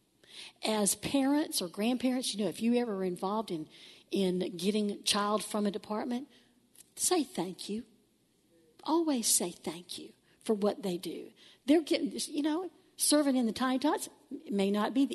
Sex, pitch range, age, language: female, 185-280 Hz, 60-79, English